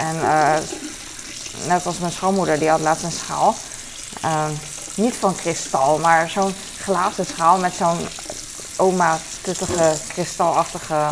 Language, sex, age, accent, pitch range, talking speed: Dutch, female, 20-39, Dutch, 155-190 Hz, 130 wpm